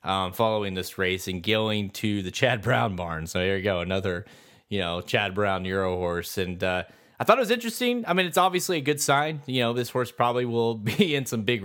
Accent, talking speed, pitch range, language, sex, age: American, 235 wpm, 95-120 Hz, English, male, 30-49